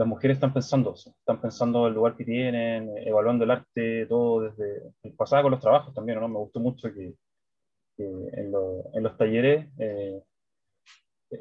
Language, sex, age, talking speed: Spanish, male, 20-39, 180 wpm